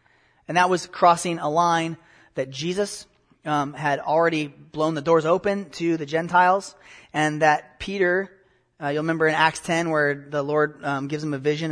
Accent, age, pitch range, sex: American, 30-49, 145-170 Hz, male